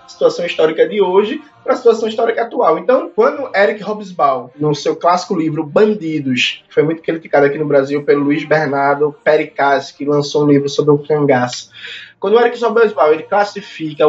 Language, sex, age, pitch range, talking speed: Portuguese, male, 20-39, 145-215 Hz, 180 wpm